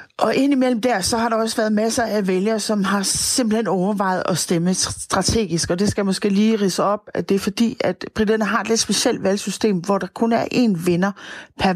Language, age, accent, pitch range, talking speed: Danish, 40-59, native, 170-215 Hz, 220 wpm